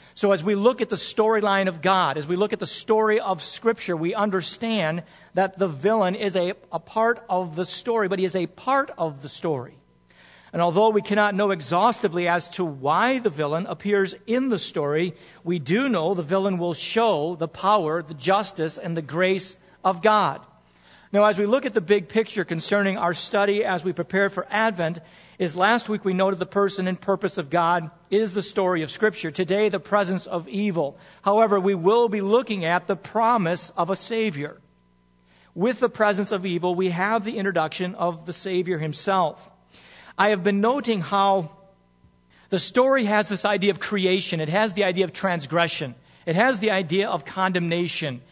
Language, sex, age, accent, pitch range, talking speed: English, male, 50-69, American, 175-210 Hz, 190 wpm